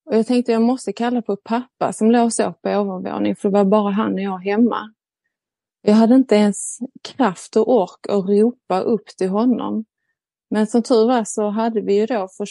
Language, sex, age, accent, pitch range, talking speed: Swedish, female, 30-49, native, 195-225 Hz, 220 wpm